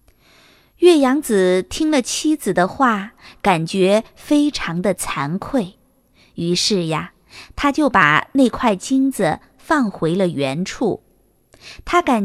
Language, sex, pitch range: Chinese, female, 200-295 Hz